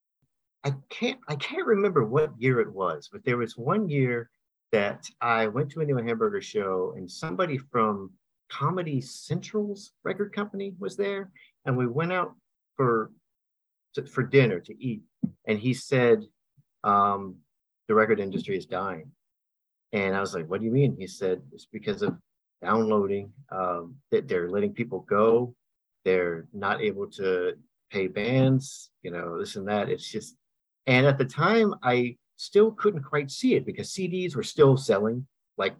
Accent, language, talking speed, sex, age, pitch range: American, English, 165 wpm, male, 50-69, 110-175 Hz